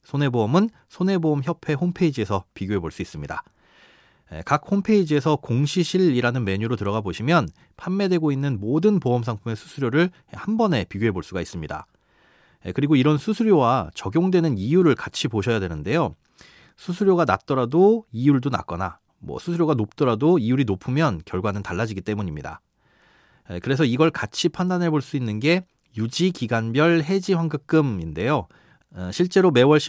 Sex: male